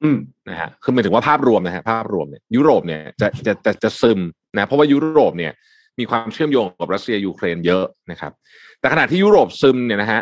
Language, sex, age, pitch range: Thai, male, 30-49, 100-140 Hz